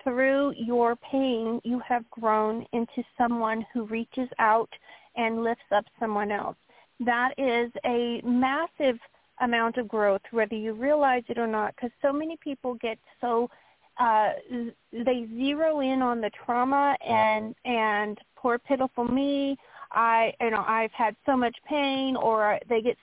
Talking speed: 150 wpm